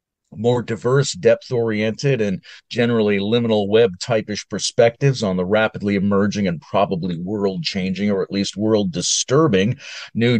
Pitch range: 110-140 Hz